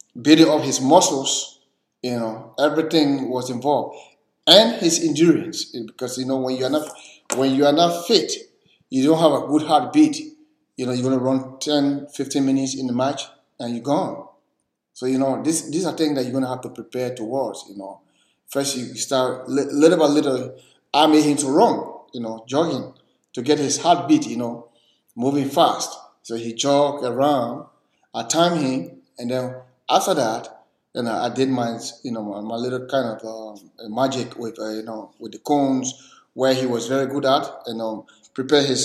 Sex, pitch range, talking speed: male, 125-160 Hz, 200 wpm